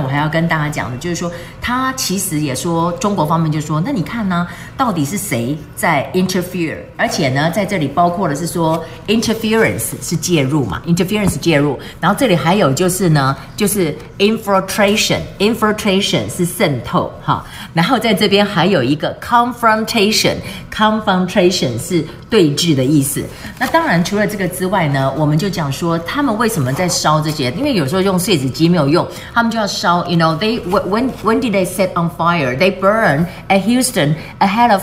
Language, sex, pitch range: Chinese, female, 155-205 Hz